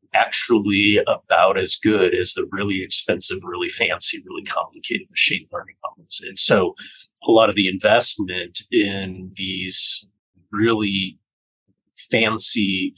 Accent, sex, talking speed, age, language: American, male, 120 wpm, 40-59, Swedish